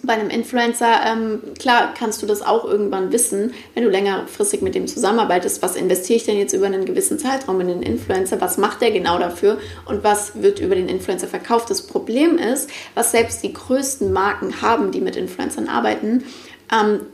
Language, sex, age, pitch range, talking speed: German, female, 30-49, 200-295 Hz, 195 wpm